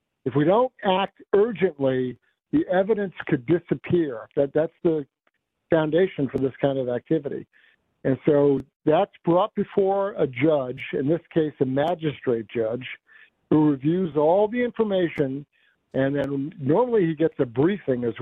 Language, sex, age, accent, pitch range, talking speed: English, male, 60-79, American, 135-170 Hz, 145 wpm